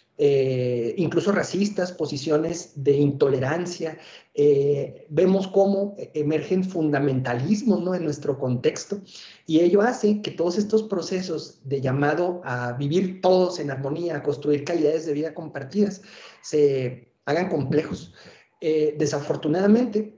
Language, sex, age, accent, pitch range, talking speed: Spanish, male, 40-59, Mexican, 140-175 Hz, 120 wpm